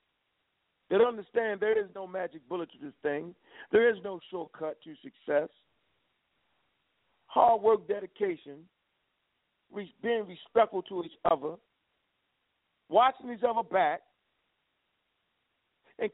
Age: 50-69